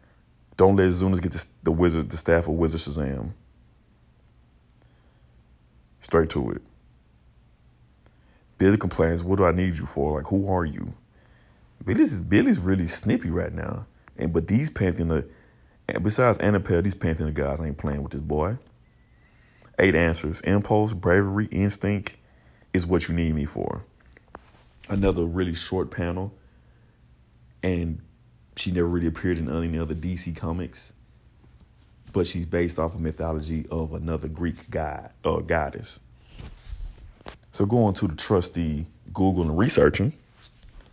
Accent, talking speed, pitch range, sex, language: American, 140 wpm, 70-90 Hz, male, English